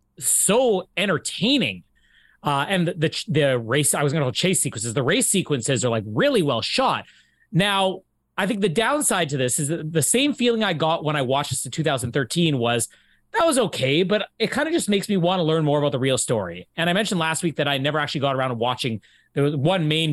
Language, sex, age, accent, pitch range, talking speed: English, male, 30-49, American, 135-200 Hz, 230 wpm